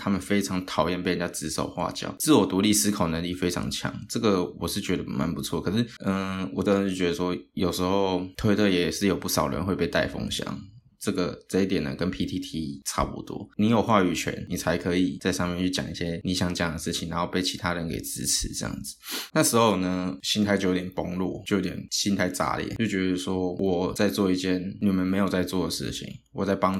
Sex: male